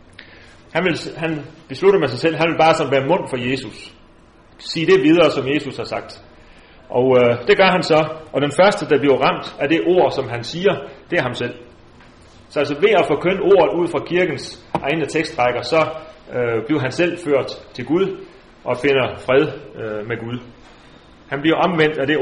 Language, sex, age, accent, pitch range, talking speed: Danish, male, 30-49, native, 125-165 Hz, 195 wpm